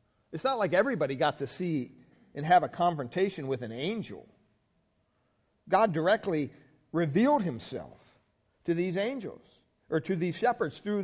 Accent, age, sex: American, 50-69, male